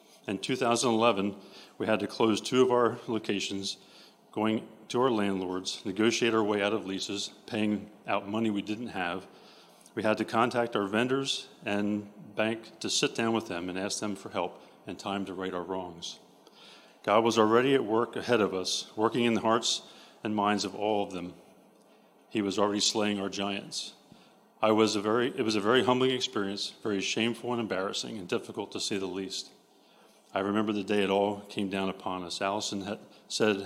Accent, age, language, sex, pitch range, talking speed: American, 40-59, English, male, 100-115 Hz, 190 wpm